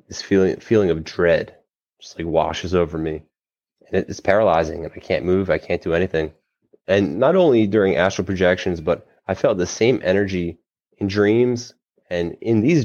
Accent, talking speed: American, 175 wpm